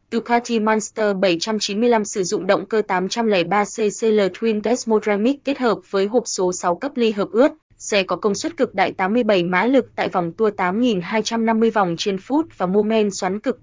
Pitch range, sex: 195-230 Hz, female